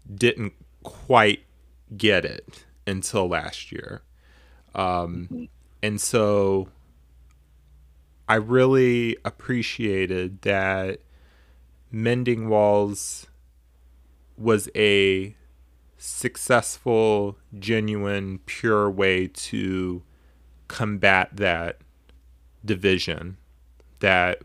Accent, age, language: American, 30-49, English